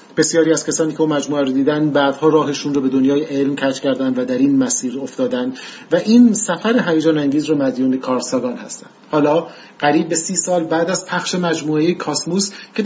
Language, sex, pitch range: Persian, male, 135-175 Hz